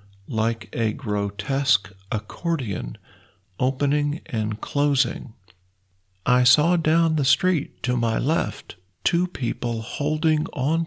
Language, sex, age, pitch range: Thai, male, 50-69, 110-140 Hz